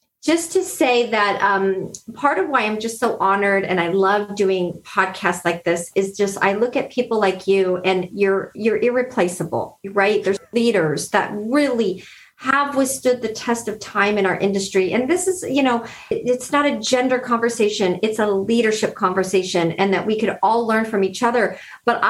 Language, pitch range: English, 195-255 Hz